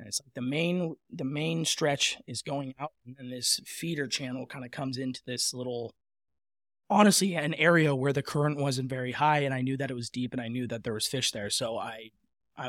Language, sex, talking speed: English, male, 225 wpm